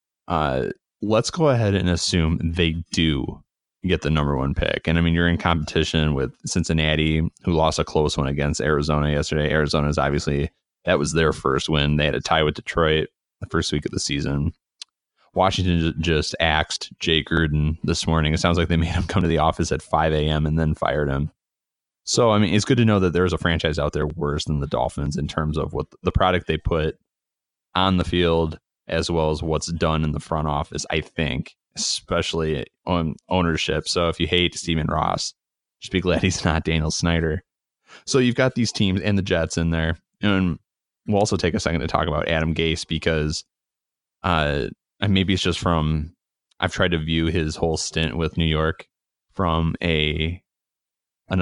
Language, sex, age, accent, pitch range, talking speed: English, male, 20-39, American, 75-85 Hz, 195 wpm